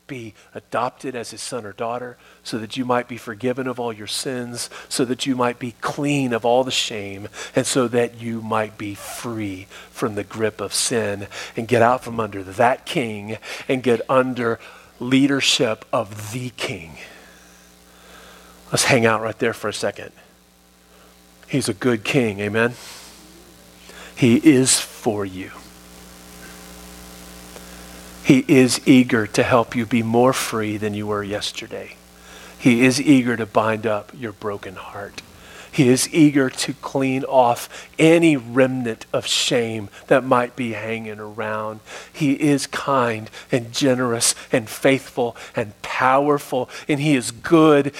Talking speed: 150 wpm